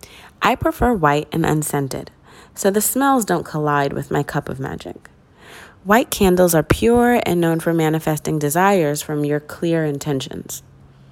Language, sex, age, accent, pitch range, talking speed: English, female, 30-49, American, 145-185 Hz, 150 wpm